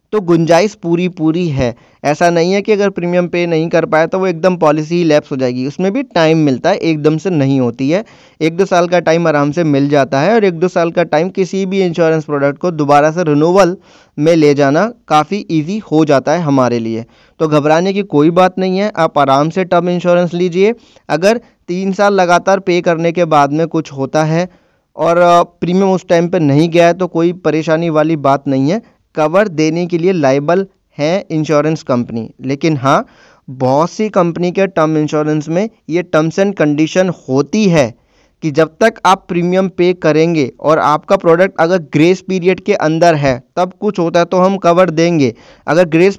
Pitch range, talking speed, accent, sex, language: 155-185 Hz, 205 wpm, native, male, Hindi